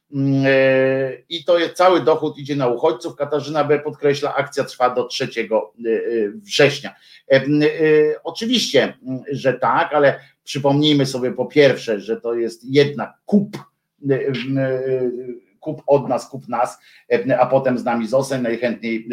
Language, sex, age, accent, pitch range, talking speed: Polish, male, 50-69, native, 120-150 Hz, 120 wpm